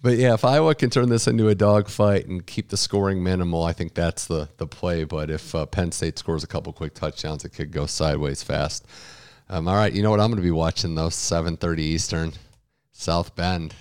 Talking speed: 225 wpm